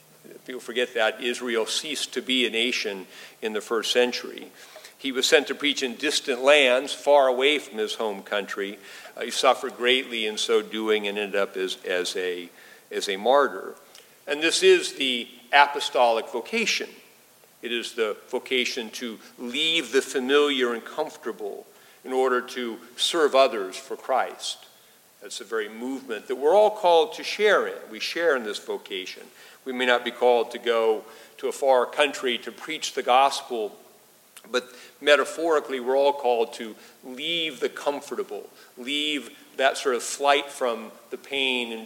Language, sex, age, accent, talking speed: English, male, 50-69, American, 165 wpm